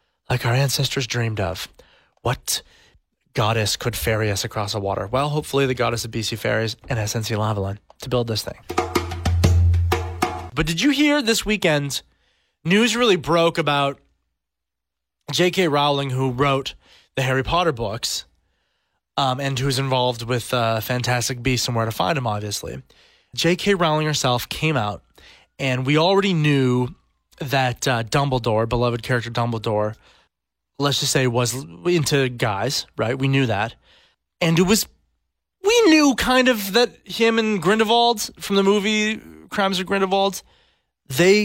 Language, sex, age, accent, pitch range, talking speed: English, male, 20-39, American, 115-190 Hz, 150 wpm